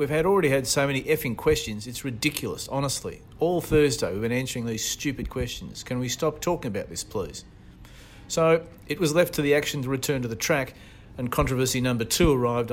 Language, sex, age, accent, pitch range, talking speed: English, male, 40-59, Australian, 110-140 Hz, 200 wpm